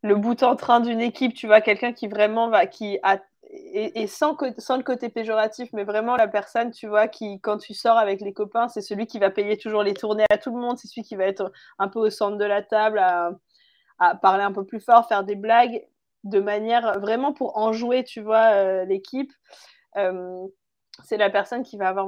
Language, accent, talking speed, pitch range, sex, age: French, French, 230 wpm, 205-235 Hz, female, 20-39